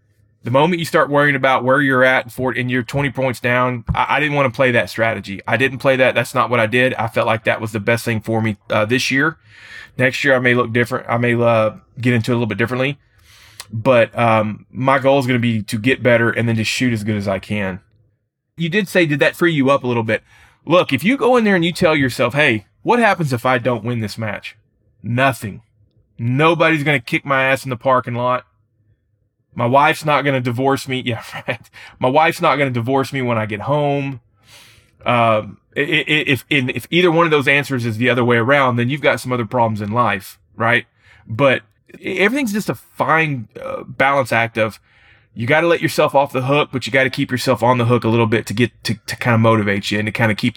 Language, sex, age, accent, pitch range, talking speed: English, male, 20-39, American, 110-135 Hz, 245 wpm